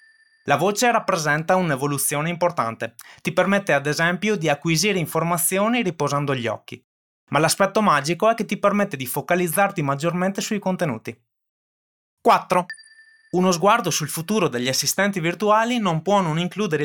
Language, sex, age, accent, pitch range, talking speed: Italian, male, 20-39, native, 145-195 Hz, 140 wpm